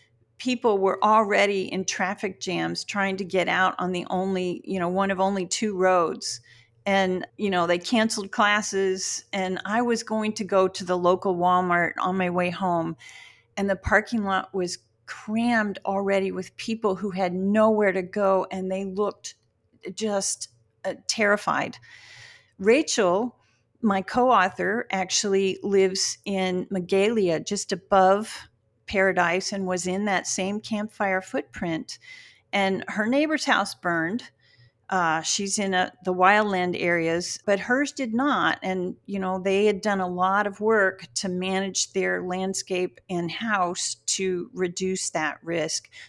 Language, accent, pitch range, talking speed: English, American, 175-205 Hz, 145 wpm